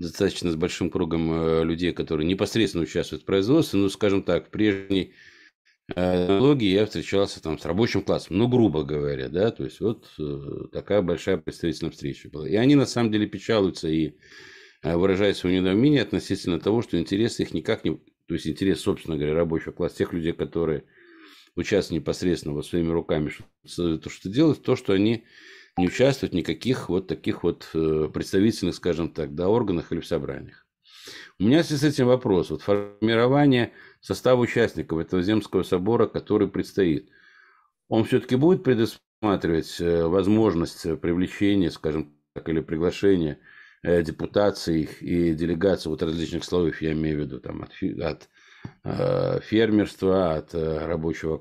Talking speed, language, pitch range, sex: 150 wpm, Russian, 80-105 Hz, male